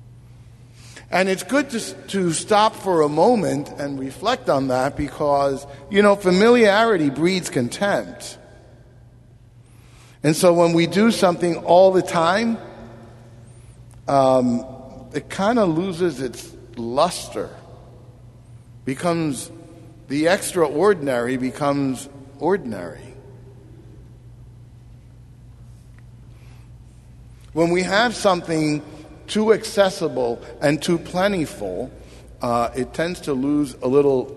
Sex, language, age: male, English, 50-69